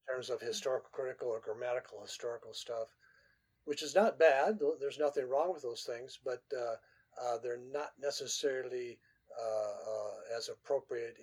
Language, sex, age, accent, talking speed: English, male, 50-69, American, 150 wpm